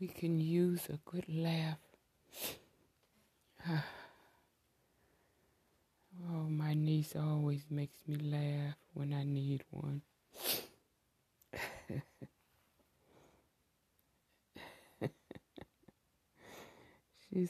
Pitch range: 135-160 Hz